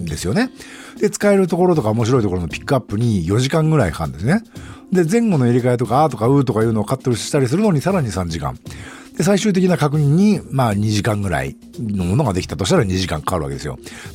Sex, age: male, 50-69